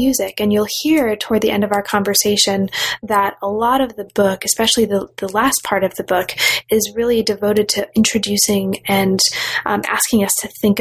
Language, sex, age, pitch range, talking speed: English, female, 20-39, 195-230 Hz, 190 wpm